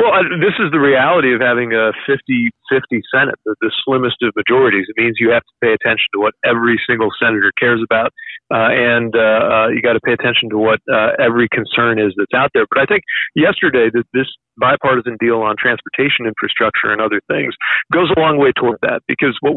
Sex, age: male, 40-59